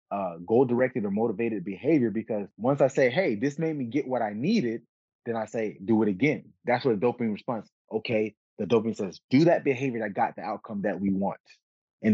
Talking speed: 215 wpm